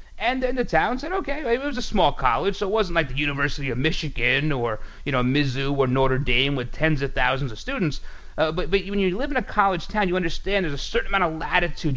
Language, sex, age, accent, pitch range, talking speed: English, male, 30-49, American, 125-175 Hz, 250 wpm